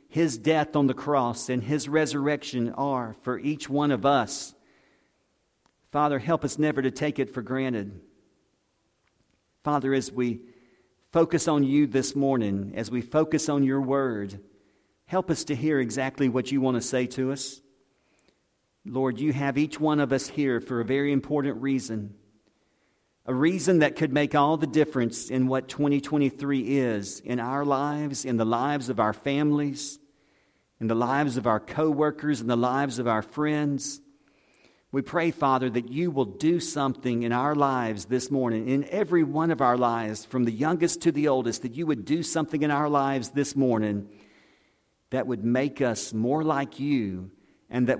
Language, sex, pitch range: English, male, 120-150 Hz